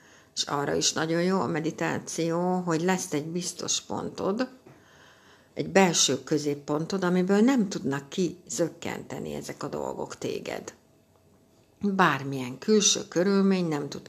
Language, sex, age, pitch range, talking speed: Hungarian, female, 60-79, 155-195 Hz, 120 wpm